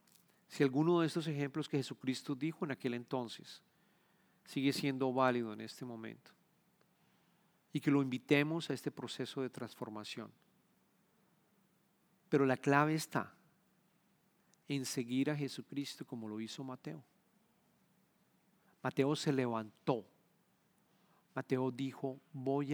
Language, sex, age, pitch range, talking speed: English, male, 40-59, 135-185 Hz, 115 wpm